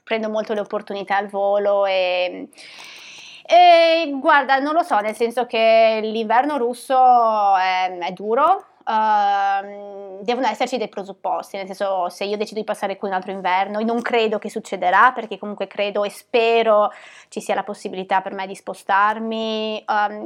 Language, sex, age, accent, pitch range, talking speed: Italian, female, 20-39, native, 200-255 Hz, 160 wpm